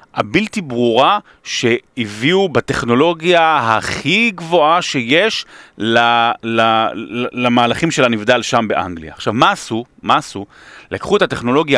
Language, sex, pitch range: Hebrew, male, 115-175 Hz